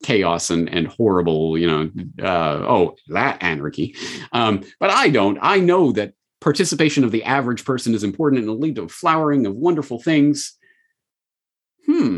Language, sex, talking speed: English, male, 165 wpm